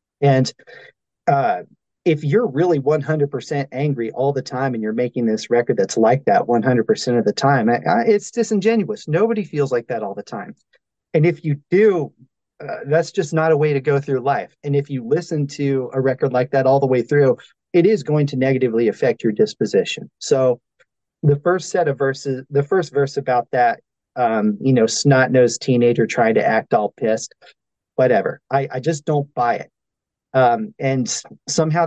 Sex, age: male, 40-59